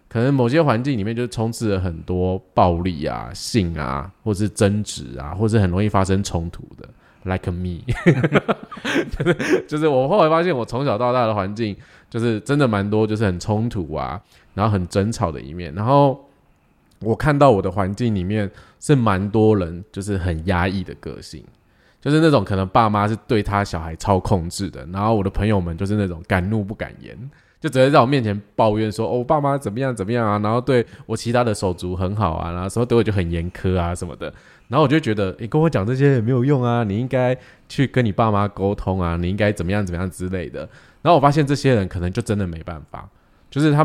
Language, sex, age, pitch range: Chinese, male, 20-39, 95-125 Hz